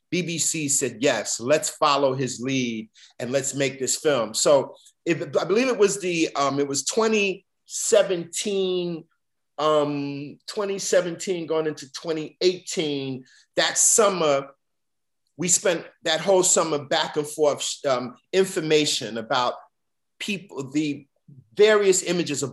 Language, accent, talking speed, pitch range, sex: English, American, 125 wpm, 135-175 Hz, male